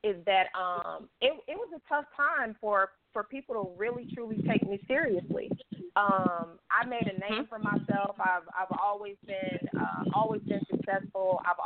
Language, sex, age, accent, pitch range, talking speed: English, female, 30-49, American, 180-215 Hz, 175 wpm